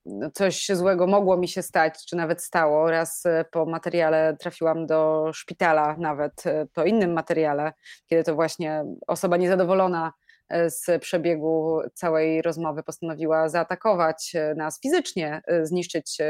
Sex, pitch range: female, 160-190 Hz